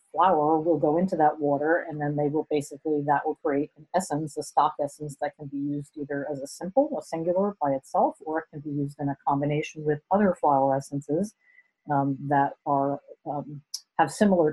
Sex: female